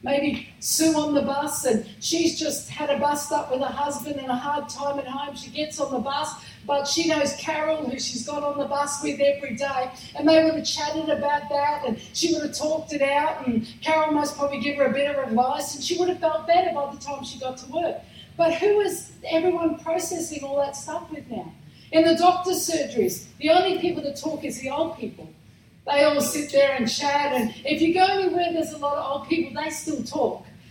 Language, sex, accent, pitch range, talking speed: English, female, Australian, 280-315 Hz, 235 wpm